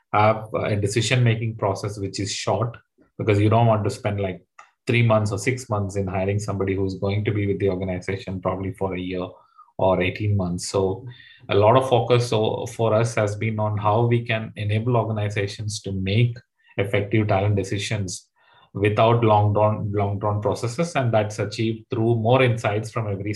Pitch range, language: 100-115 Hz, English